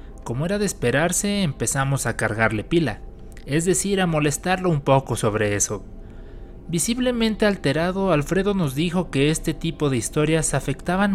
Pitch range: 115-180 Hz